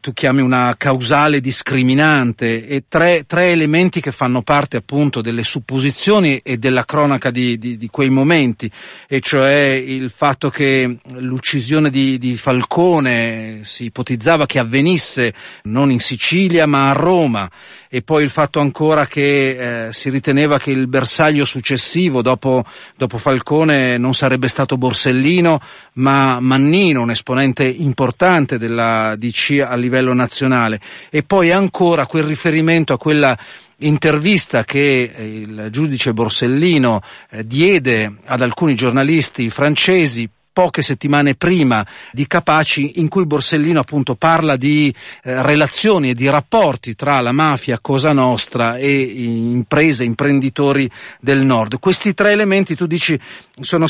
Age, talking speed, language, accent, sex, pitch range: 40-59, 135 wpm, Italian, native, male, 125-155 Hz